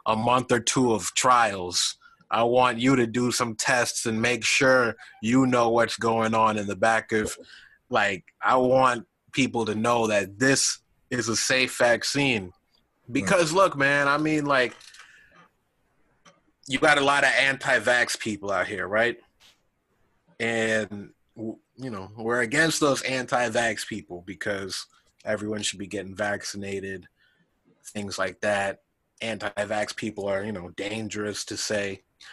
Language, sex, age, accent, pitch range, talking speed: English, male, 30-49, American, 110-130 Hz, 145 wpm